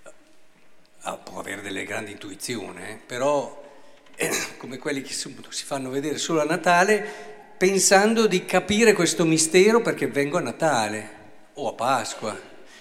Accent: native